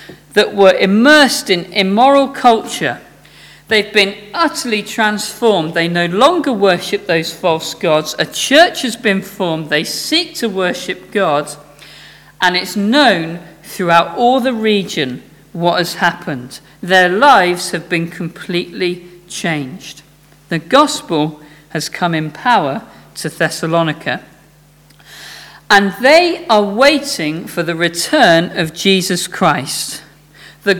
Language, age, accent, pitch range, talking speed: English, 50-69, British, 160-230 Hz, 120 wpm